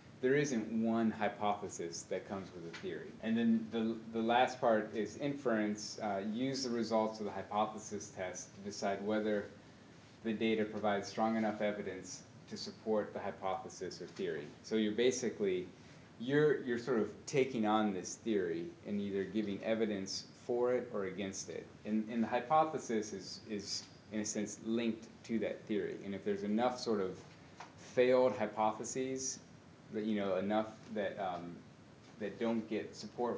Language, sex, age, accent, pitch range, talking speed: English, male, 30-49, American, 100-115 Hz, 165 wpm